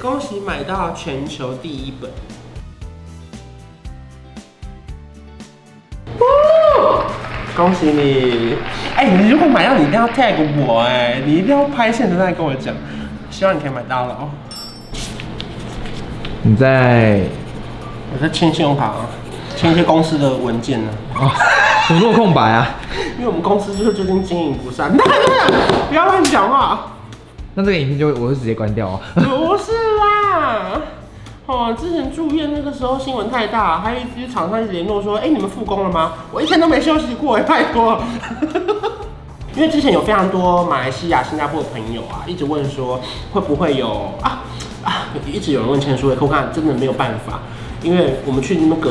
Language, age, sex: Chinese, 20-39, male